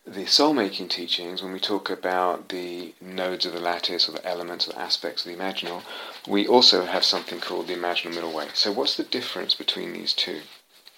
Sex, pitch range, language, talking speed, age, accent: male, 85-100 Hz, English, 200 wpm, 30-49, British